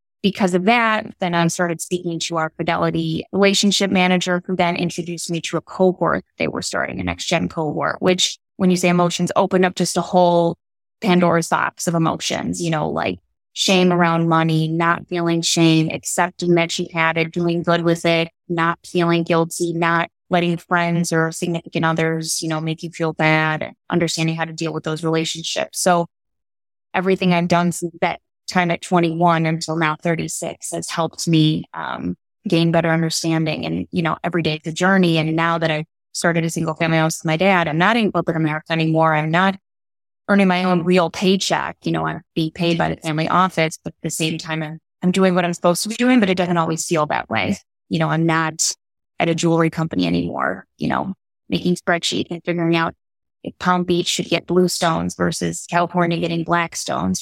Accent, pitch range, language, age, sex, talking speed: American, 160-180 Hz, English, 20-39, female, 200 wpm